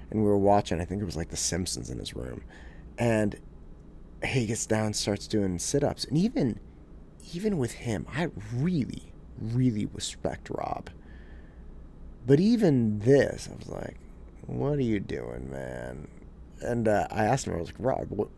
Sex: male